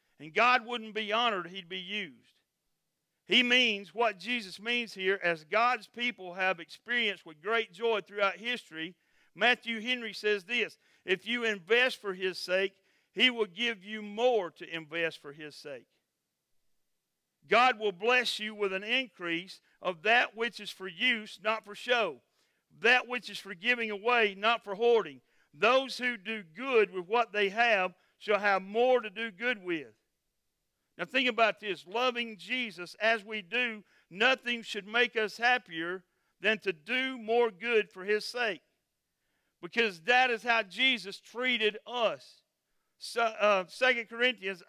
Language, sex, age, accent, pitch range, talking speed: English, male, 50-69, American, 195-240 Hz, 155 wpm